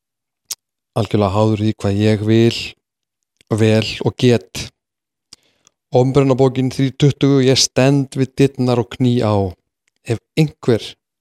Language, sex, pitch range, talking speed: English, male, 115-135 Hz, 110 wpm